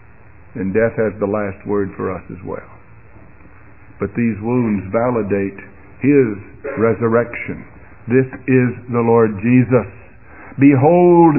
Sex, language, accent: male, English, American